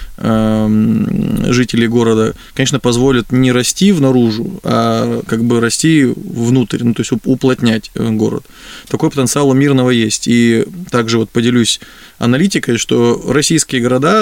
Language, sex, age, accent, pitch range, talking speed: Russian, male, 20-39, native, 115-135 Hz, 125 wpm